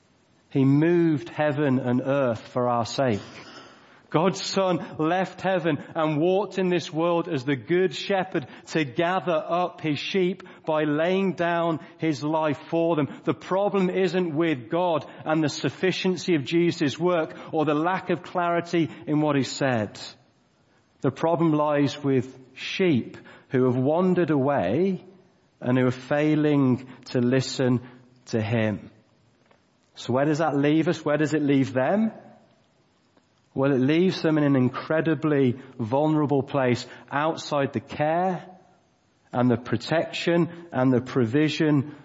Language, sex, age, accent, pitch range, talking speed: English, male, 40-59, British, 125-170 Hz, 140 wpm